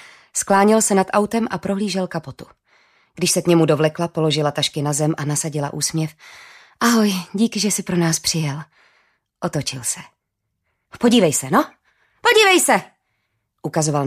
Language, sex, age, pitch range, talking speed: Czech, female, 30-49, 155-225 Hz, 145 wpm